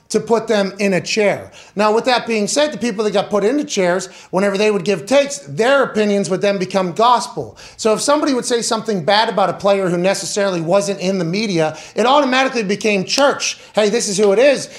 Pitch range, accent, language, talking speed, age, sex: 190-225 Hz, American, English, 225 wpm, 30-49, male